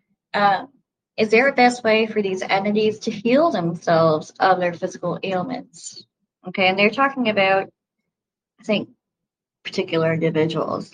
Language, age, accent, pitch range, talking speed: English, 20-39, American, 180-215 Hz, 135 wpm